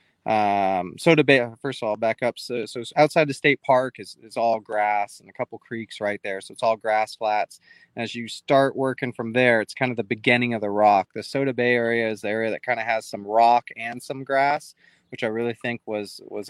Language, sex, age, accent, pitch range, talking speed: English, male, 20-39, American, 110-125 Hz, 245 wpm